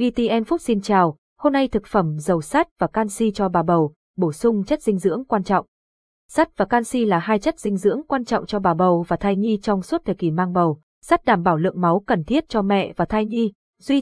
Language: Vietnamese